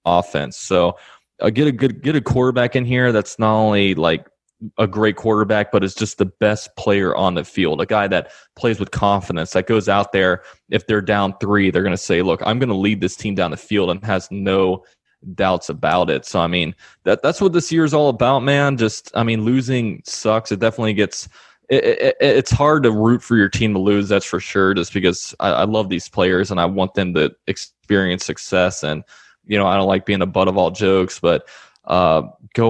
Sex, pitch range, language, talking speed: male, 95-115 Hz, English, 225 wpm